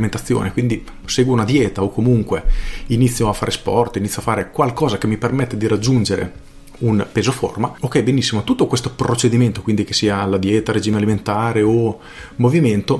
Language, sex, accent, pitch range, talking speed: Italian, male, native, 105-145 Hz, 165 wpm